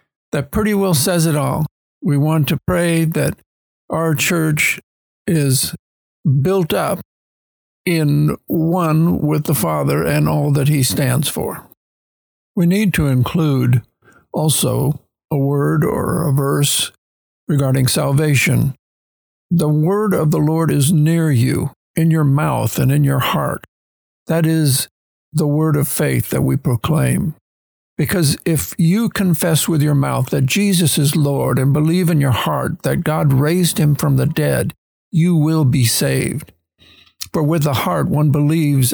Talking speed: 150 wpm